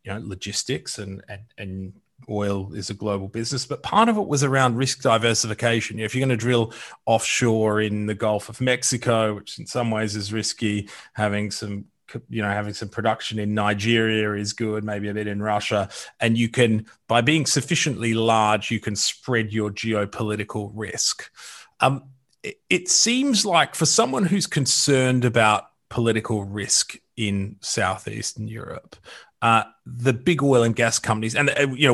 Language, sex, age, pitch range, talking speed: English, male, 30-49, 105-130 Hz, 175 wpm